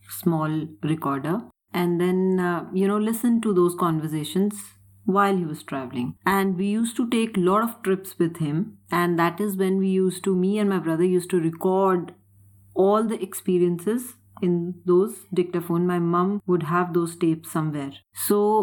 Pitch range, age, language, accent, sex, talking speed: 165-195 Hz, 30-49, Hindi, native, female, 170 wpm